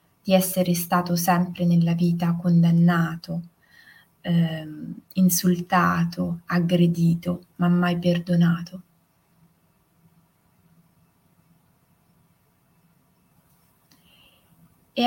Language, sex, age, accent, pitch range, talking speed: Italian, female, 20-39, native, 170-190 Hz, 55 wpm